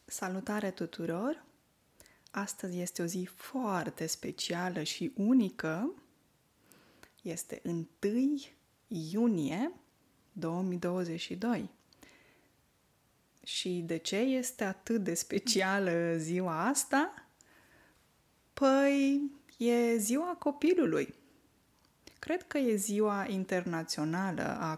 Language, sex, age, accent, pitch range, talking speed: Romanian, female, 20-39, native, 180-250 Hz, 80 wpm